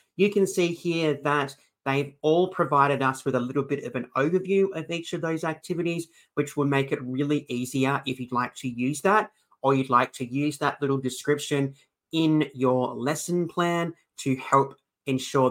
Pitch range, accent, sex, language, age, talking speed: 130-160 Hz, Australian, male, English, 30-49, 185 wpm